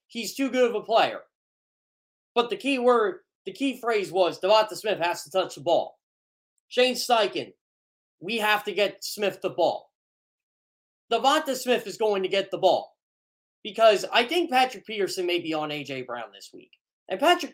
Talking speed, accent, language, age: 180 wpm, American, English, 20-39